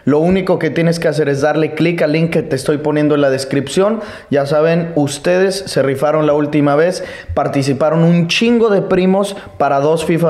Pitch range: 130-160 Hz